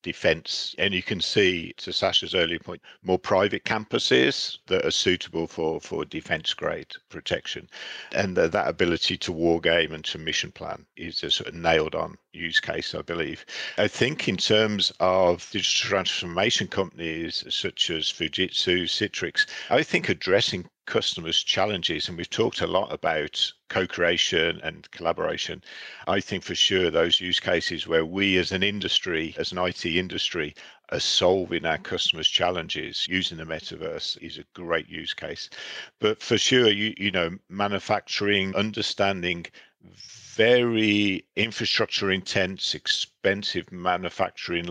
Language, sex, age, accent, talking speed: English, male, 50-69, British, 145 wpm